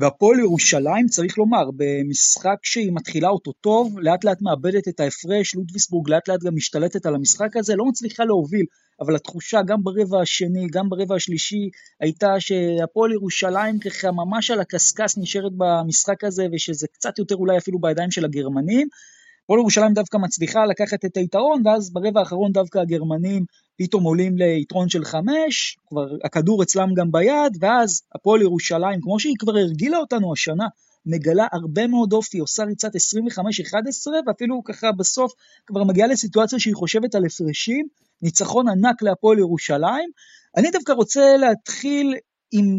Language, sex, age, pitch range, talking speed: Hebrew, male, 20-39, 175-230 Hz, 155 wpm